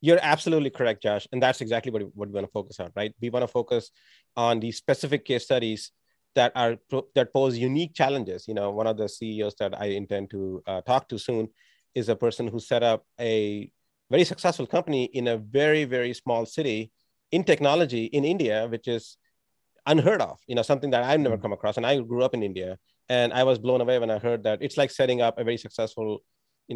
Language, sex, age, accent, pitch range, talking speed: English, male, 30-49, Indian, 105-130 Hz, 220 wpm